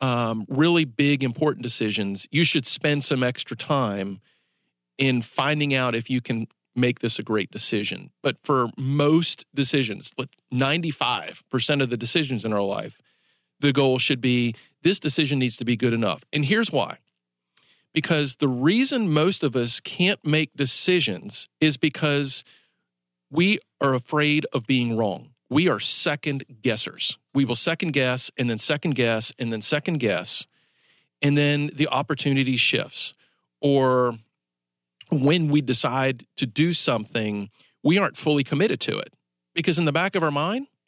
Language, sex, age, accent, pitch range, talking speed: English, male, 40-59, American, 120-155 Hz, 150 wpm